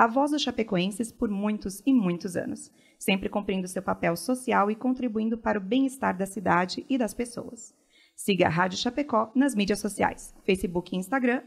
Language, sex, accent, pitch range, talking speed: Portuguese, female, Brazilian, 185-255 Hz, 180 wpm